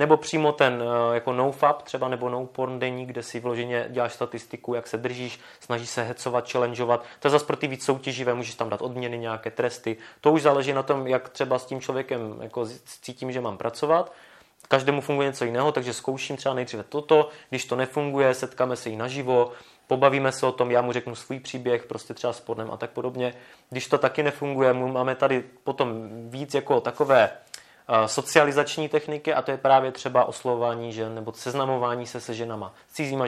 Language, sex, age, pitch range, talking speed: Czech, male, 20-39, 120-140 Hz, 195 wpm